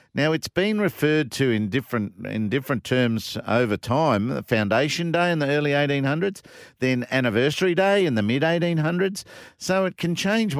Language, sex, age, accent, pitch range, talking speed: English, male, 50-69, Australian, 110-145 Hz, 165 wpm